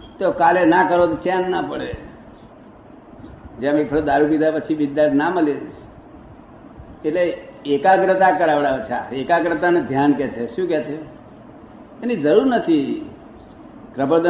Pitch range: 140-185 Hz